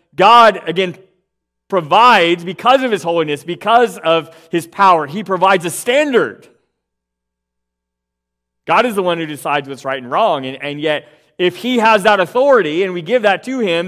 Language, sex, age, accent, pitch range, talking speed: English, male, 30-49, American, 120-170 Hz, 170 wpm